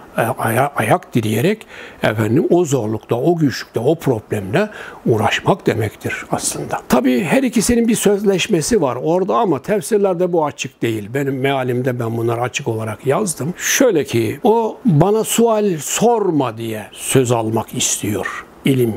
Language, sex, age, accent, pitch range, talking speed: Turkish, male, 60-79, native, 115-180 Hz, 135 wpm